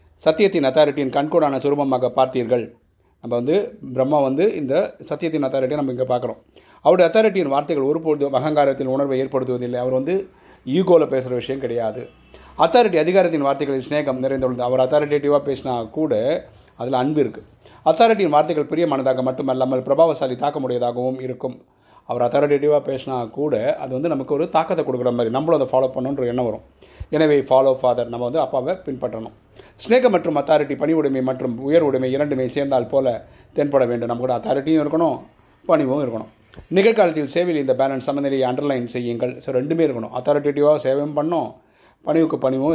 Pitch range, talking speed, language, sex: 125-145 Hz, 145 wpm, Tamil, male